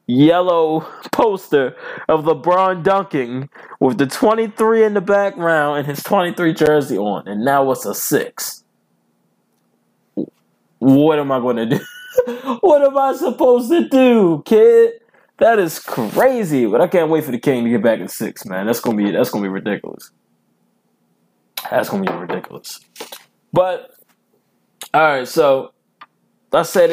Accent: American